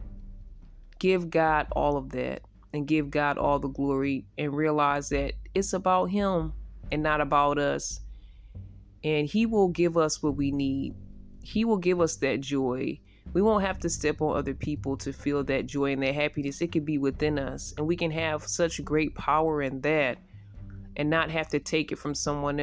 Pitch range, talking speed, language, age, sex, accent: 140-160 Hz, 190 wpm, English, 20-39, female, American